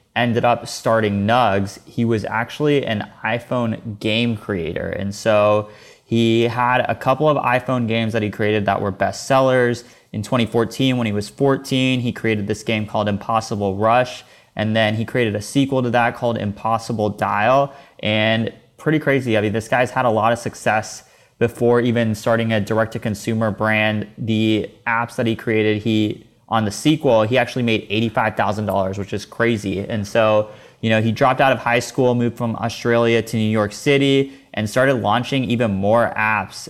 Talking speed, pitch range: 180 wpm, 105-125 Hz